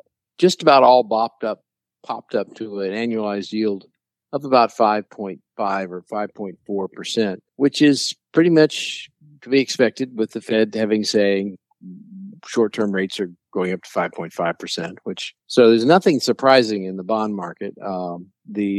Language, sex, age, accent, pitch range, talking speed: English, male, 50-69, American, 100-120 Hz, 155 wpm